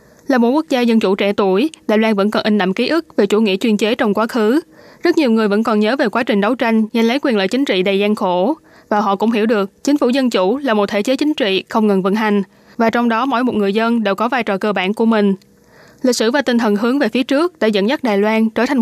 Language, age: Vietnamese, 20-39